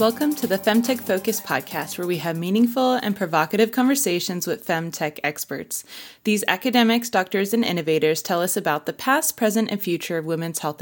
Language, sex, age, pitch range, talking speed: English, female, 20-39, 175-225 Hz, 175 wpm